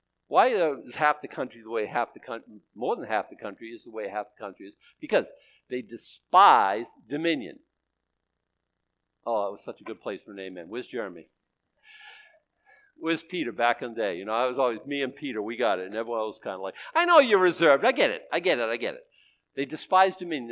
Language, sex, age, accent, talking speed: English, male, 50-69, American, 225 wpm